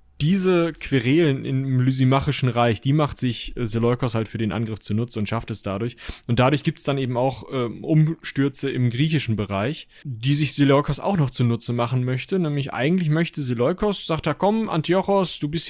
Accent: German